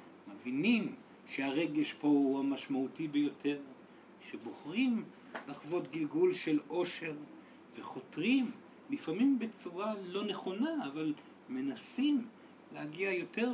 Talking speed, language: 90 wpm, Hebrew